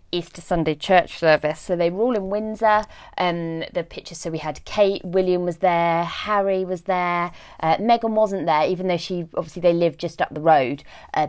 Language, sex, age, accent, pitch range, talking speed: English, female, 20-39, British, 155-195 Hz, 205 wpm